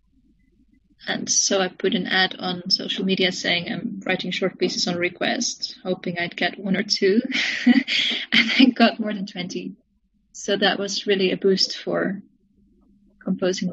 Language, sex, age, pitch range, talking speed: English, female, 20-39, 190-230 Hz, 155 wpm